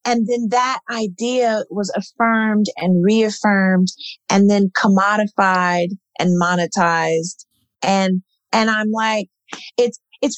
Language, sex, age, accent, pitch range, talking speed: English, female, 40-59, American, 225-340 Hz, 110 wpm